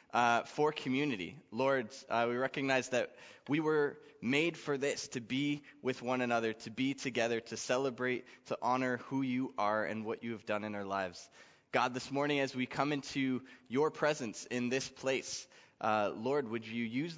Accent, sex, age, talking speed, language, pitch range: American, male, 20-39, 185 wpm, English, 115-145 Hz